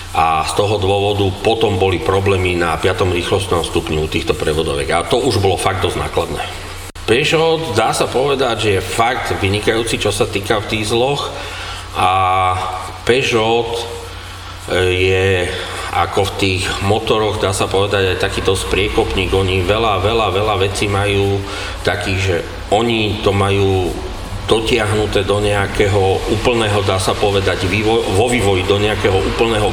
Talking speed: 145 wpm